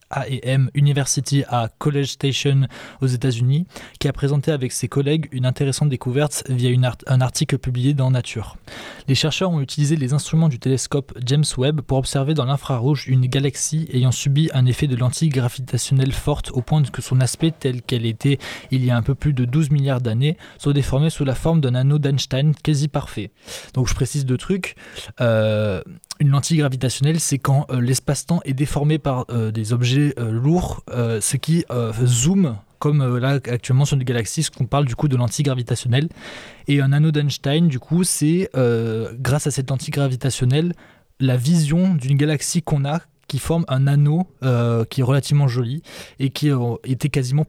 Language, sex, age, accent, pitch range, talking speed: French, male, 20-39, French, 125-150 Hz, 190 wpm